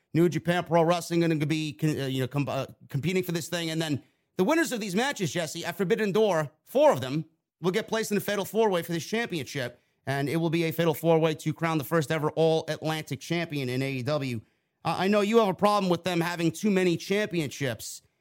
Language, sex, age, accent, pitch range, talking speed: English, male, 30-49, American, 145-185 Hz, 220 wpm